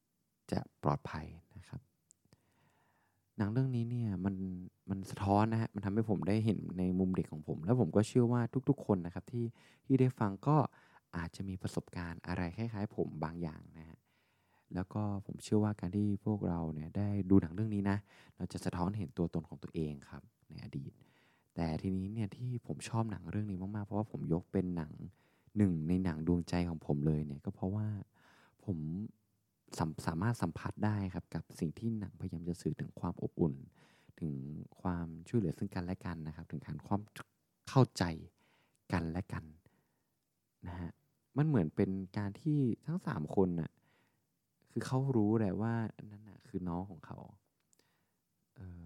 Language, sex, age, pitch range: Thai, male, 20-39, 85-110 Hz